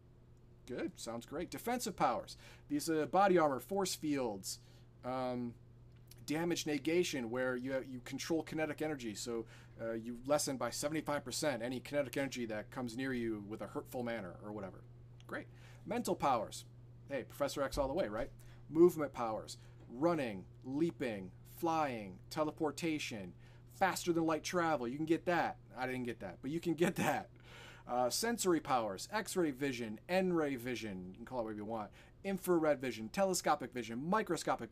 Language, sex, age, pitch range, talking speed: English, male, 40-59, 120-165 Hz, 160 wpm